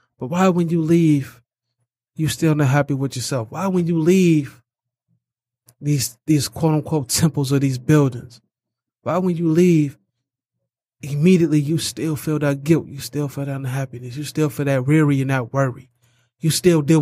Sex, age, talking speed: male, 20-39, 170 wpm